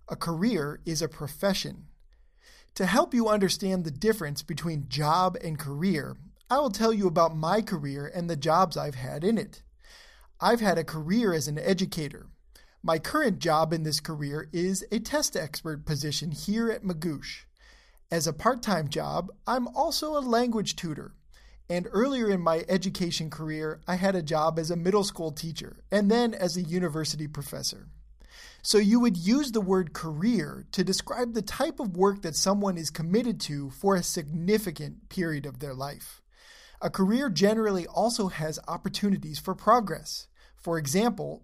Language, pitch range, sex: English, 160-215 Hz, male